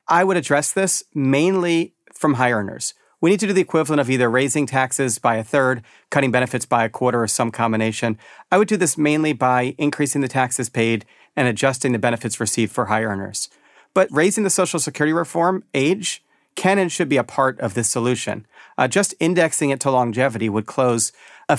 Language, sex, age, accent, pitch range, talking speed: English, male, 40-59, American, 115-150 Hz, 200 wpm